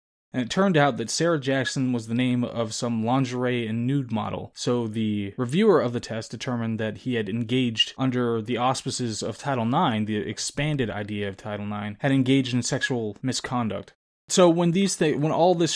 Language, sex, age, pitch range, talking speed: English, male, 20-39, 115-140 Hz, 195 wpm